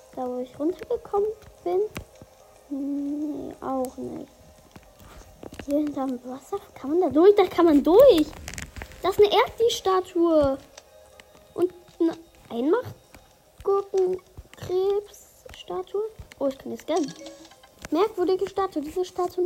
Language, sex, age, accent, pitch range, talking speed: German, female, 20-39, German, 270-375 Hz, 110 wpm